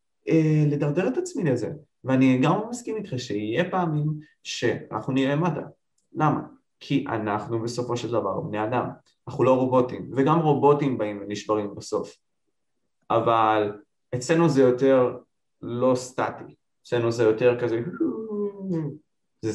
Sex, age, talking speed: male, 20-39, 125 wpm